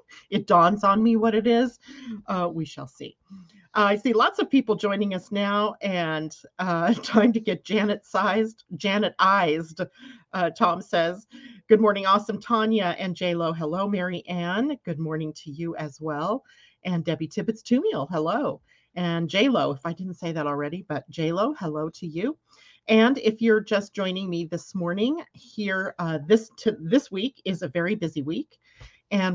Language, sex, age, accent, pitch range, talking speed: English, female, 40-59, American, 170-220 Hz, 170 wpm